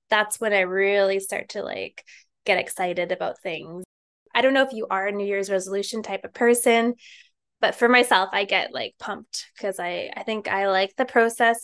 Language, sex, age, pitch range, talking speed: English, female, 10-29, 195-245 Hz, 195 wpm